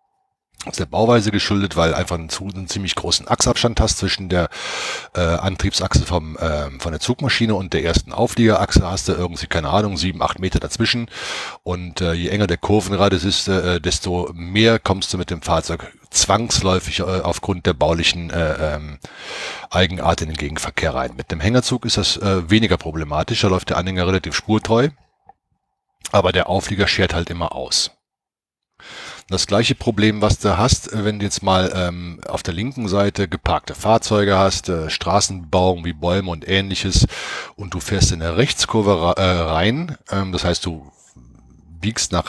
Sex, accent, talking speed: male, German, 175 wpm